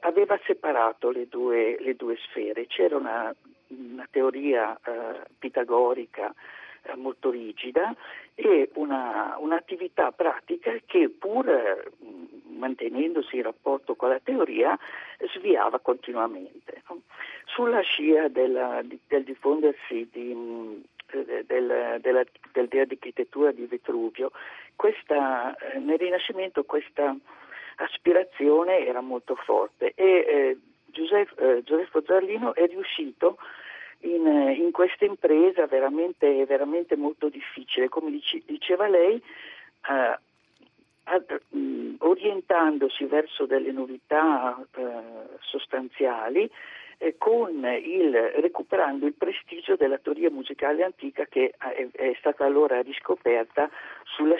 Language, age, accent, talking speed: Italian, 50-69, native, 115 wpm